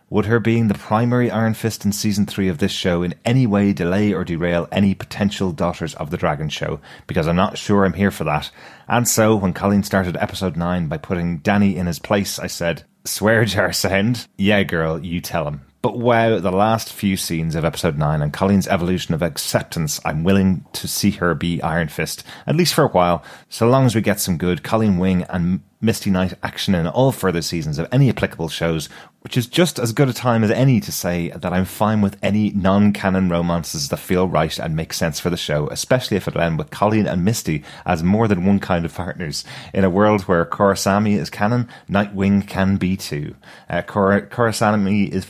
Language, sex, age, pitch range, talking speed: English, male, 30-49, 85-110 Hz, 215 wpm